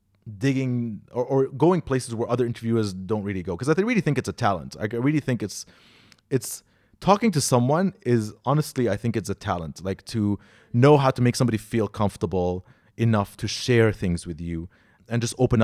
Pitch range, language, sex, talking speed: 100-125 Hz, English, male, 195 wpm